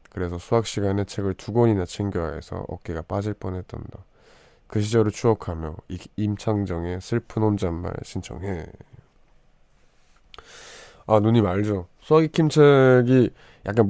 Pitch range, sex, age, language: 95-130 Hz, male, 20-39, Korean